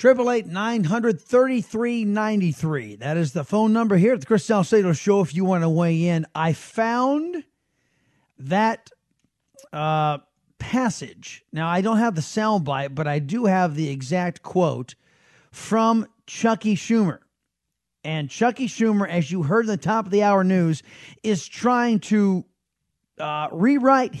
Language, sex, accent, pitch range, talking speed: English, male, American, 180-300 Hz, 145 wpm